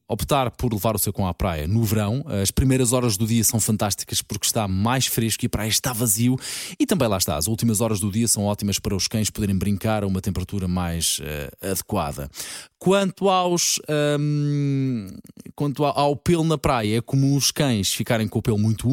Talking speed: 205 wpm